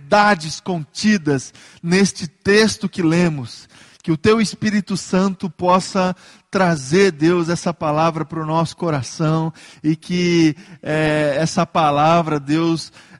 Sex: male